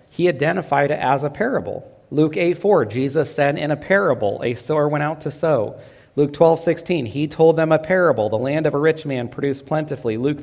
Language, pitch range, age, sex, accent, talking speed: English, 125-155 Hz, 40-59, male, American, 215 wpm